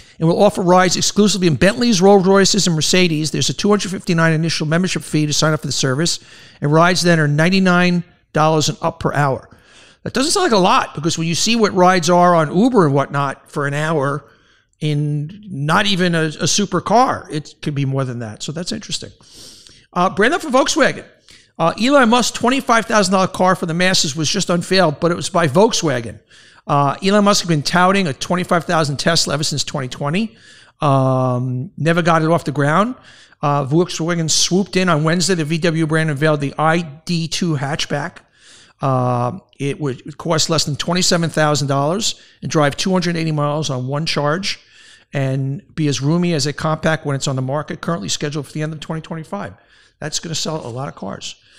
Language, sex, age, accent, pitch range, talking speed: English, male, 60-79, American, 145-185 Hz, 185 wpm